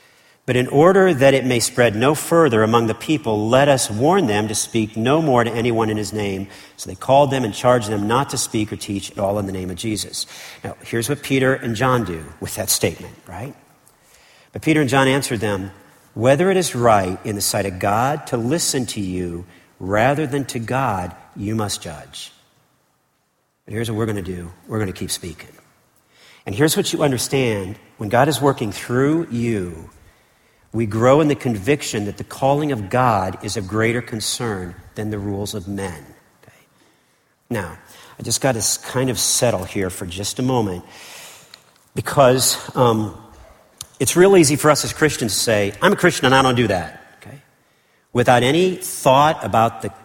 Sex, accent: male, American